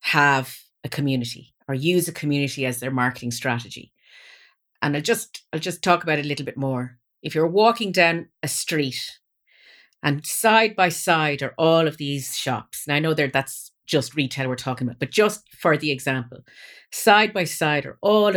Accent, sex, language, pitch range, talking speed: Irish, female, English, 135-175 Hz, 185 wpm